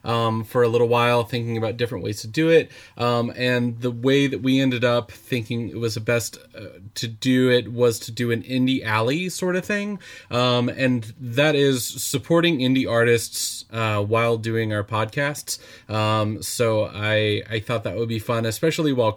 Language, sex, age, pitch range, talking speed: English, male, 20-39, 110-125 Hz, 190 wpm